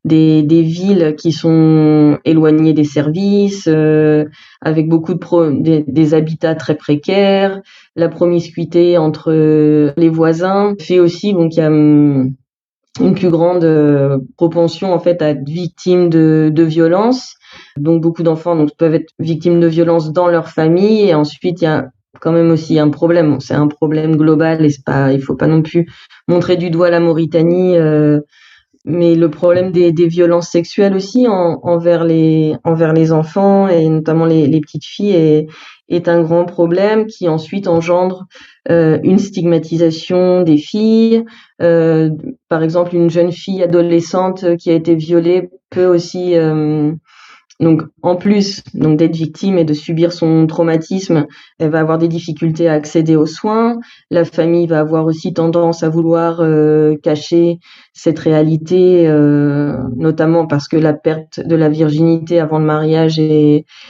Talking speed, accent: 160 wpm, French